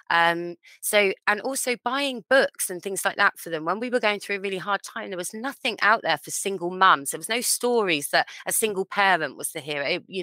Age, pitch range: 20-39, 165-200 Hz